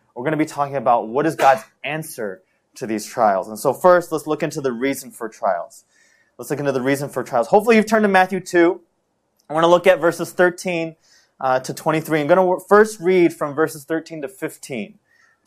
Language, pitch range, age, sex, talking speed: English, 140-180 Hz, 20-39, male, 215 wpm